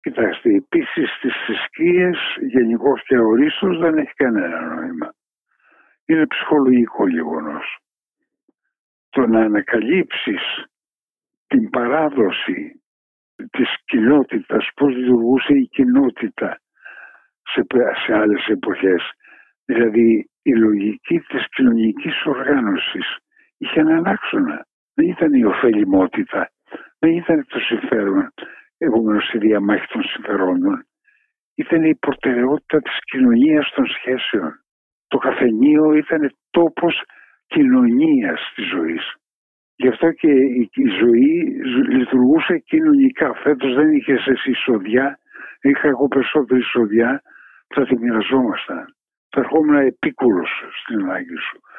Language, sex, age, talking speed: Greek, male, 60-79, 105 wpm